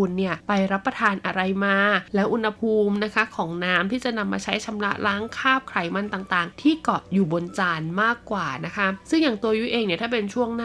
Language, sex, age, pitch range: Thai, female, 20-39, 175-220 Hz